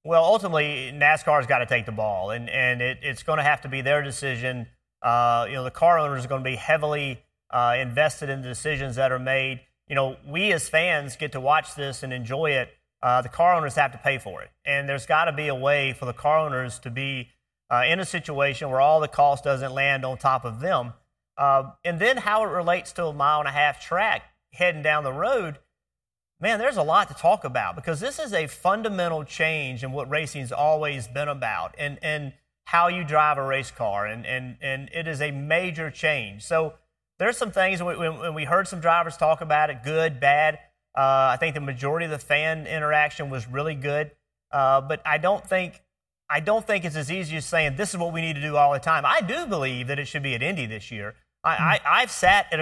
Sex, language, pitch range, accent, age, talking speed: male, English, 135-160 Hz, American, 30-49, 230 wpm